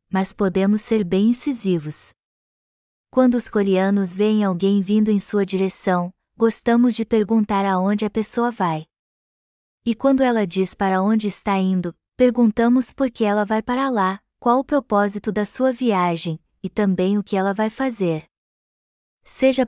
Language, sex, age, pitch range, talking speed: Portuguese, female, 20-39, 195-230 Hz, 150 wpm